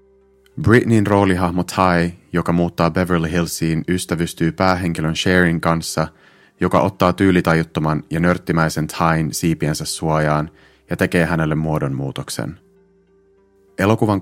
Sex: male